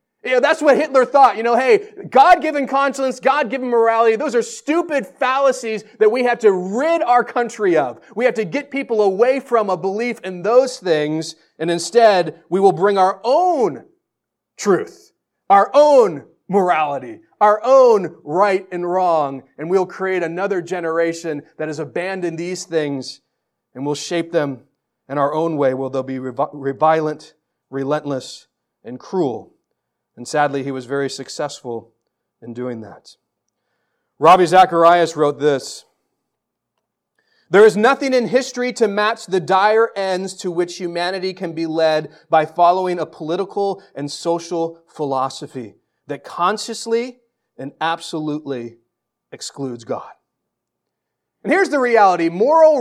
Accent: American